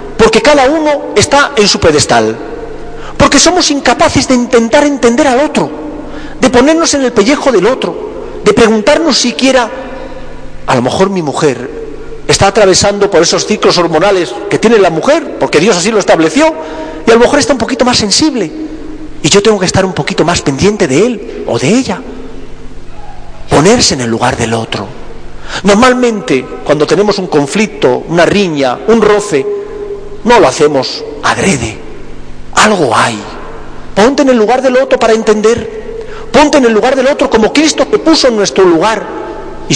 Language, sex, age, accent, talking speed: Spanish, male, 40-59, Spanish, 170 wpm